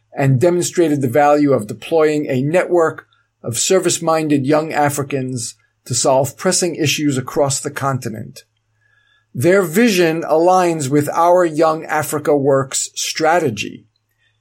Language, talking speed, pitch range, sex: English, 115 wpm, 115-160 Hz, male